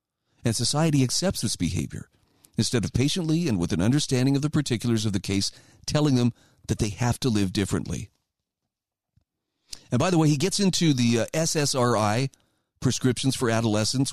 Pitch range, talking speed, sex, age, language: 110-145 Hz, 160 wpm, male, 40-59, English